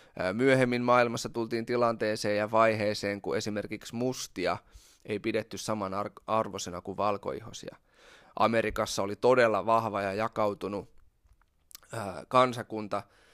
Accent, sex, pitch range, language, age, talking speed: native, male, 105-120 Hz, Finnish, 20-39, 95 wpm